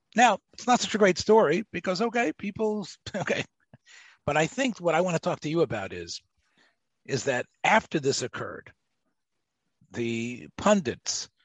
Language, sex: English, male